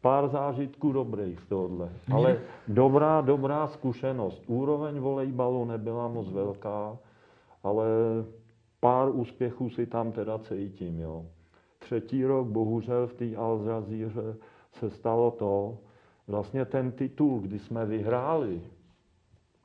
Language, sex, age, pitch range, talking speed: Czech, male, 40-59, 90-115 Hz, 110 wpm